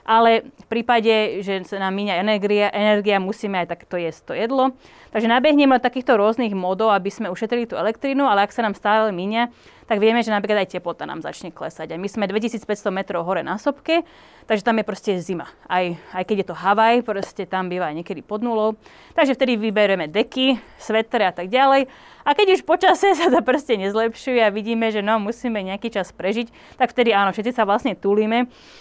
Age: 30-49